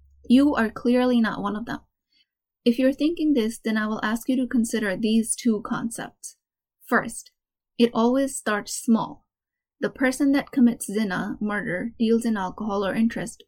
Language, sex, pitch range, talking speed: English, female, 220-255 Hz, 165 wpm